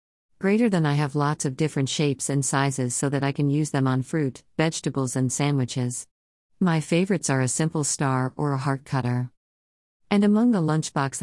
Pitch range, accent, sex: 130-155 Hz, American, female